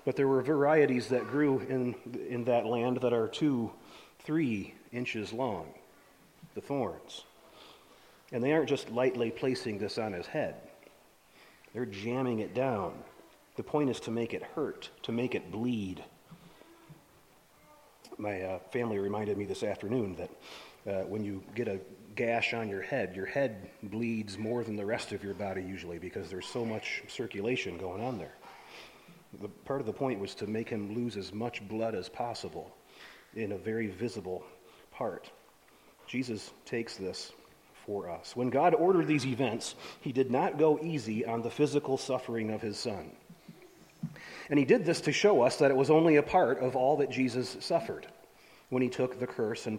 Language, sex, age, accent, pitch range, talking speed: English, male, 40-59, American, 110-135 Hz, 175 wpm